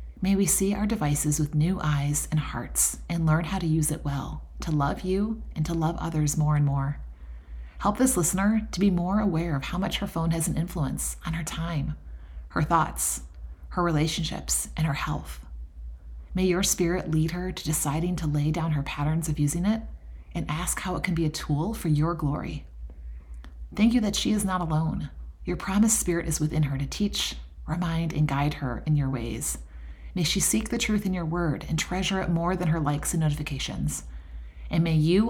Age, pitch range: 30-49, 130-180 Hz